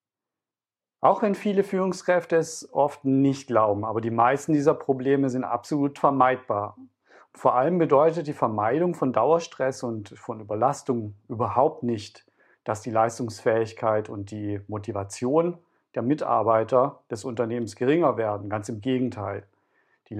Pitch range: 110-140 Hz